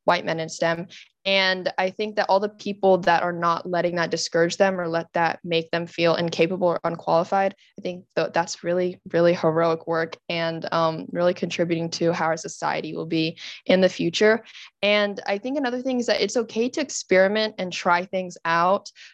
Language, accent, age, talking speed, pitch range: English, American, 20-39, 195 wpm, 170-195 Hz